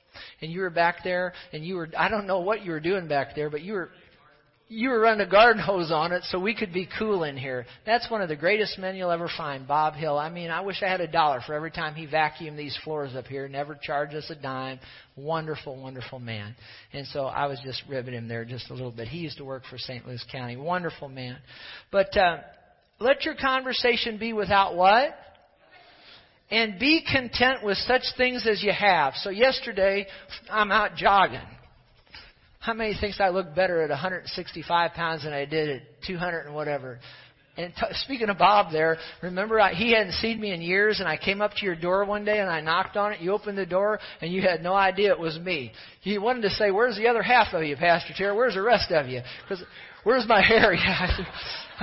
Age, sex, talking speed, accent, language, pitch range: 50-69, male, 225 wpm, American, English, 150-205 Hz